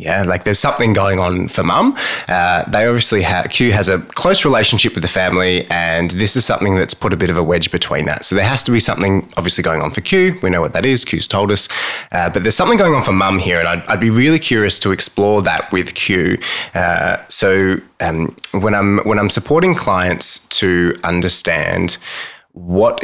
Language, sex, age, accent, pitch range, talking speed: English, male, 20-39, Australian, 85-110 Hz, 220 wpm